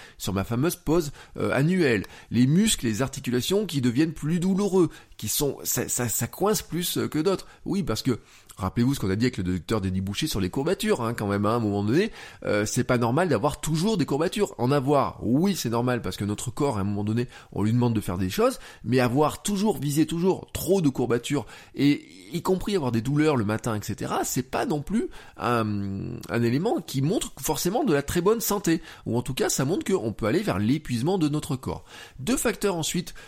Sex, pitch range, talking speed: male, 110-155 Hz, 225 wpm